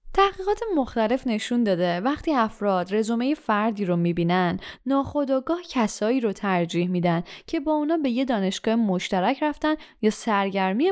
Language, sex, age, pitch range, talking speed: Persian, female, 10-29, 205-290 Hz, 135 wpm